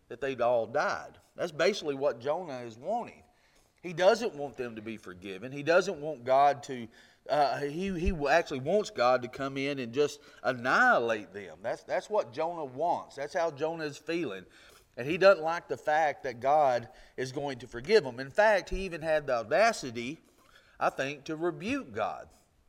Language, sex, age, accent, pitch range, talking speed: English, male, 40-59, American, 140-190 Hz, 185 wpm